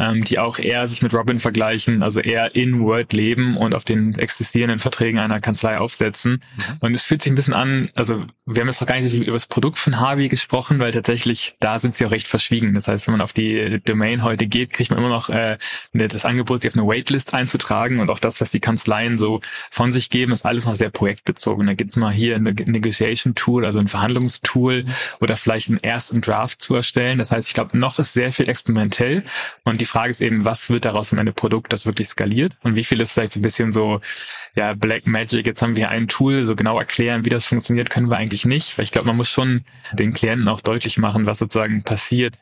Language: German